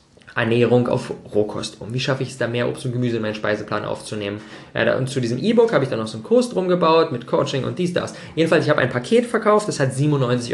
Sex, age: male, 20-39